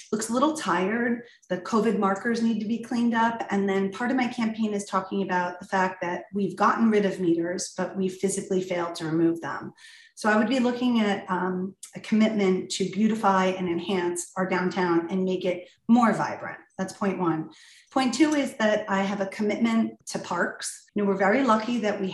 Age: 30-49